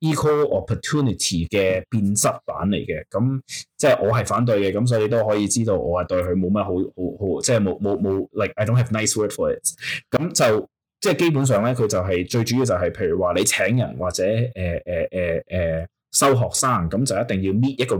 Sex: male